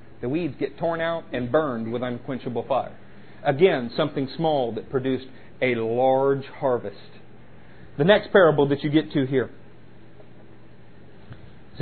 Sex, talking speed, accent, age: male, 135 wpm, American, 40-59